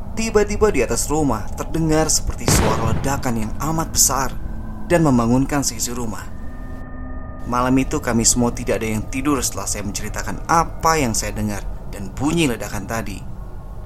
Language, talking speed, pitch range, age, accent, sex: Indonesian, 145 wpm, 100-125 Hz, 20-39, native, male